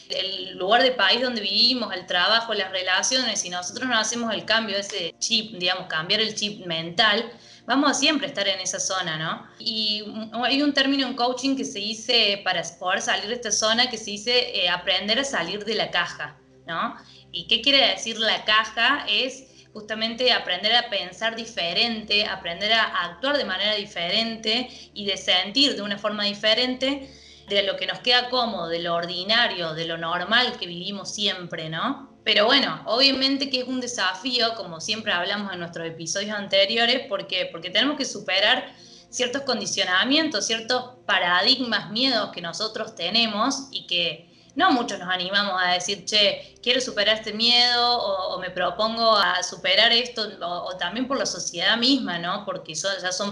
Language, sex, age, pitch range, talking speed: Spanish, female, 20-39, 185-240 Hz, 175 wpm